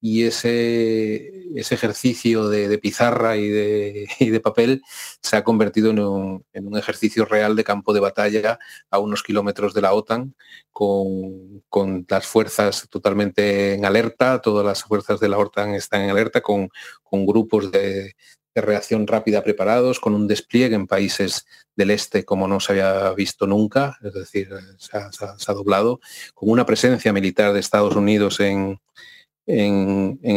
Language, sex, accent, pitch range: Spanish, male, Spanish, 100-110 Hz